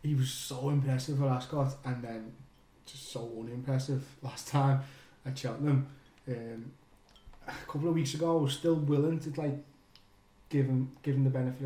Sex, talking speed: male, 155 wpm